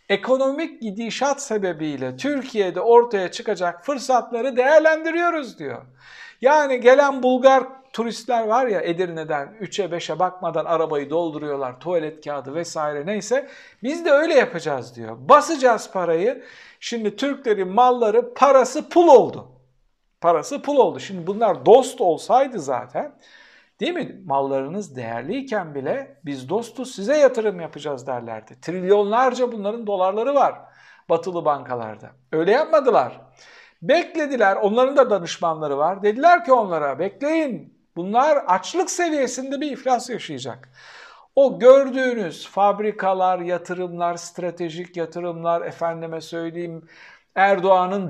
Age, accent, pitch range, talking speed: 60-79, native, 170-260 Hz, 110 wpm